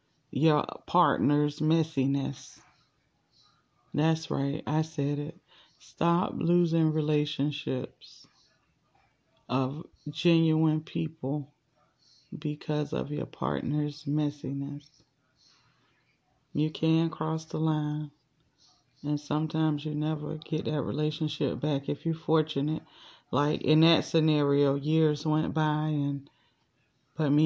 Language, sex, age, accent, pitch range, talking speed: English, female, 30-49, American, 145-165 Hz, 100 wpm